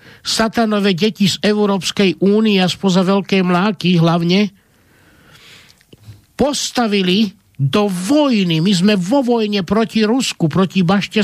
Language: Slovak